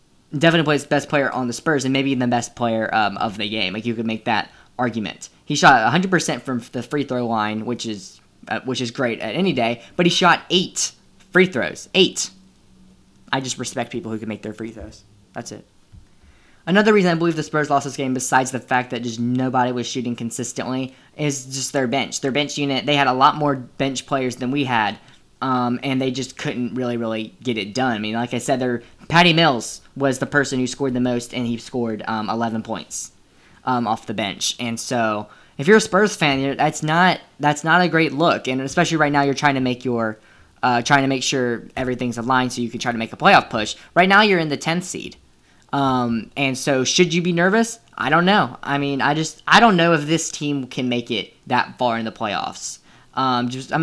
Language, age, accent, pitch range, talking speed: English, 10-29, American, 120-150 Hz, 230 wpm